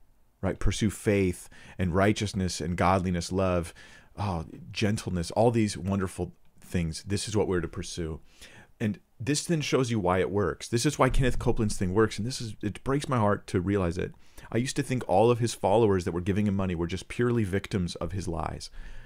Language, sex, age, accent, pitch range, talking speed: English, male, 40-59, American, 90-110 Hz, 205 wpm